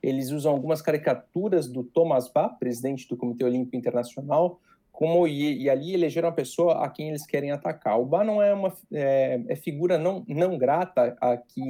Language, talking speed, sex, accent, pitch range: Portuguese, 170 wpm, male, Brazilian, 130-180 Hz